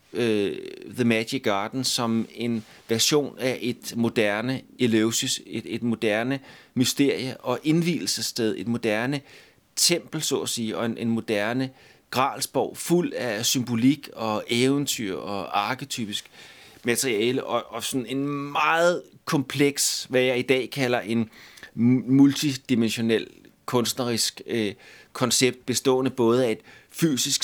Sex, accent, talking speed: male, native, 120 wpm